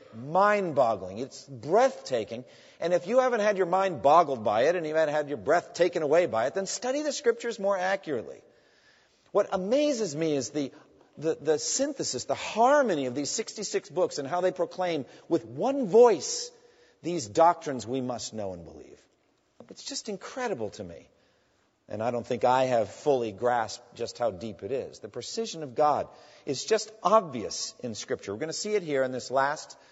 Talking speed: 185 wpm